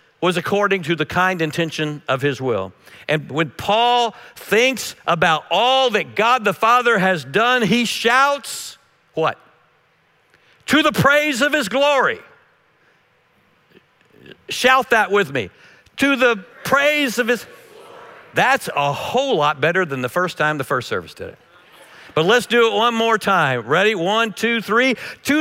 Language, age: English, 60-79